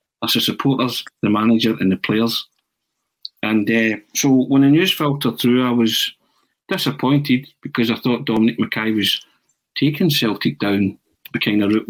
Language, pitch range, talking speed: English, 115-145 Hz, 160 wpm